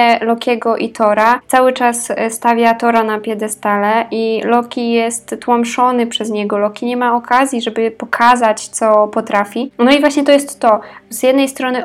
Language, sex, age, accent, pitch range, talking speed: Polish, female, 20-39, native, 220-250 Hz, 160 wpm